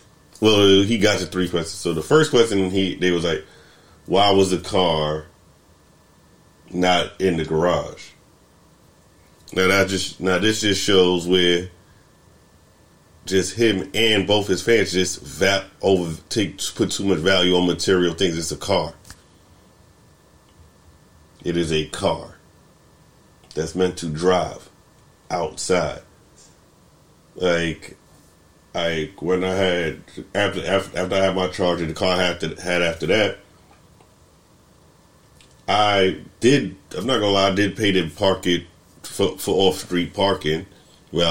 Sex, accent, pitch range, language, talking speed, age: male, American, 85-95 Hz, English, 140 wpm, 40-59